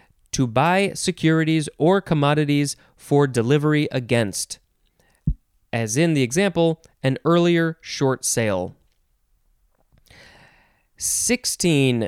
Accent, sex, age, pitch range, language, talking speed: American, male, 20-39, 125-160 Hz, English, 85 wpm